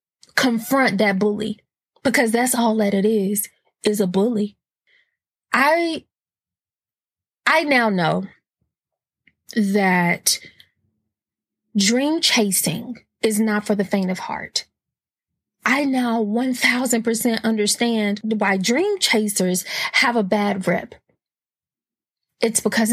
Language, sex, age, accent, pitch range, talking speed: English, female, 20-39, American, 205-245 Hz, 100 wpm